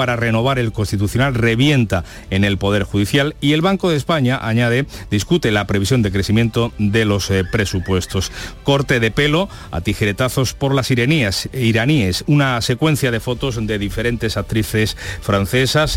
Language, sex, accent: Spanish, male, Spanish